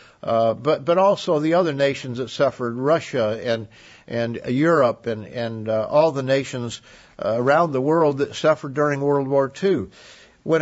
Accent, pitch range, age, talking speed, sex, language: American, 125-160 Hz, 60-79, 170 wpm, male, English